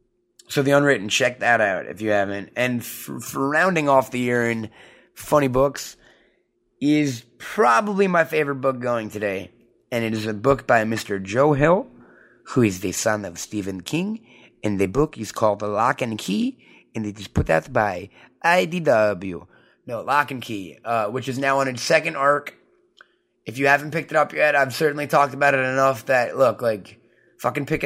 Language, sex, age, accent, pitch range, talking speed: English, male, 30-49, American, 120-165 Hz, 190 wpm